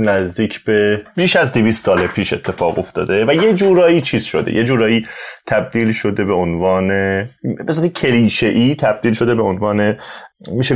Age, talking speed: 30-49, 145 wpm